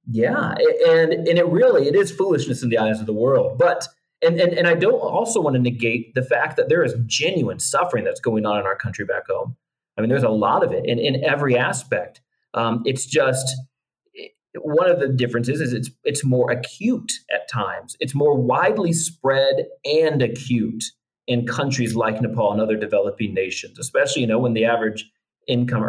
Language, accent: English, American